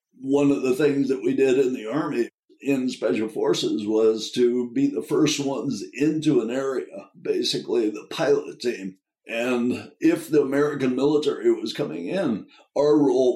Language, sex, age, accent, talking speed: English, male, 60-79, American, 160 wpm